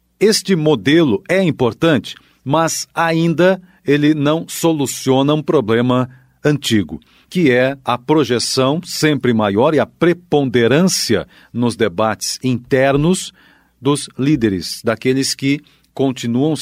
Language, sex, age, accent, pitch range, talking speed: Portuguese, male, 50-69, Brazilian, 120-155 Hz, 105 wpm